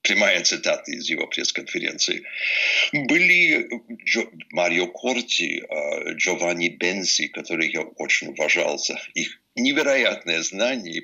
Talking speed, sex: 100 wpm, male